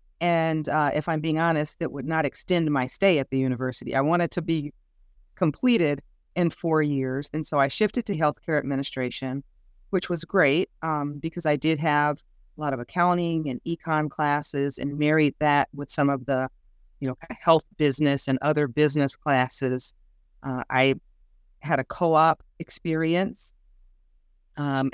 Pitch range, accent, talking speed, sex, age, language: 135-160 Hz, American, 165 wpm, female, 40-59, English